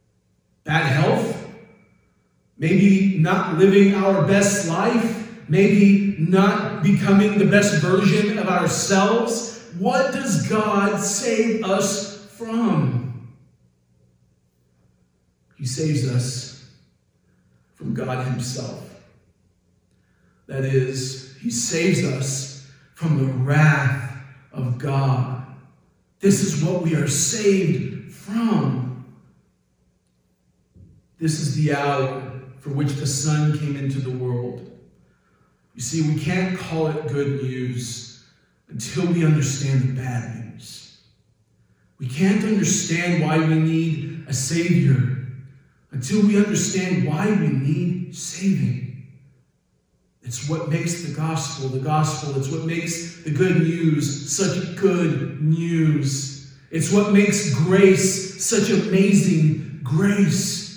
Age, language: 40-59, English